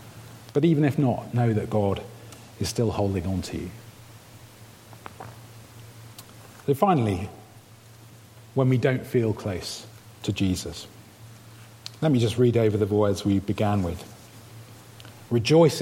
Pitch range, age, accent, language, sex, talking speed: 105-125 Hz, 40-59, British, English, male, 125 wpm